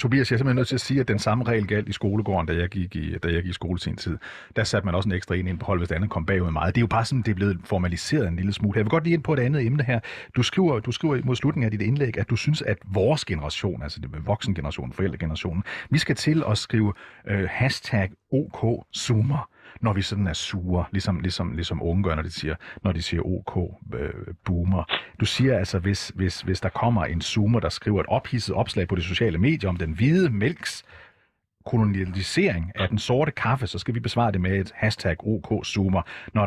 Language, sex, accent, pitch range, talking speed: Danish, male, native, 95-120 Hz, 235 wpm